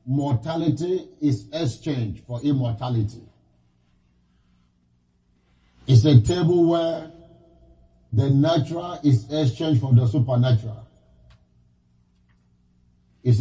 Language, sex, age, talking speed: English, male, 50-69, 75 wpm